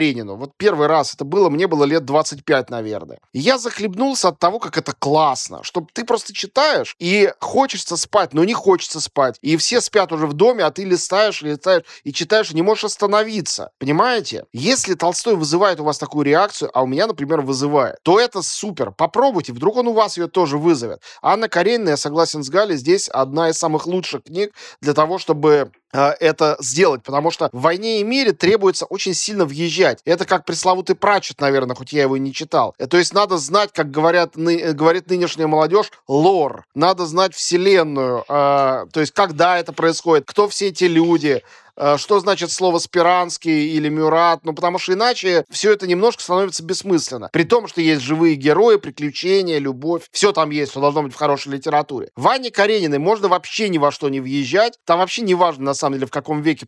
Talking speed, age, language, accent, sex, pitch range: 190 wpm, 20-39, Russian, native, male, 145-195 Hz